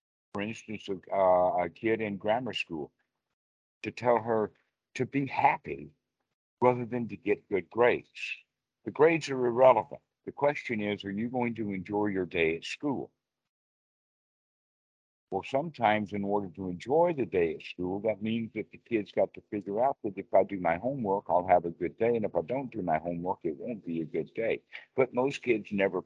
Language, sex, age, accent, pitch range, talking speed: English, male, 60-79, American, 90-115 Hz, 190 wpm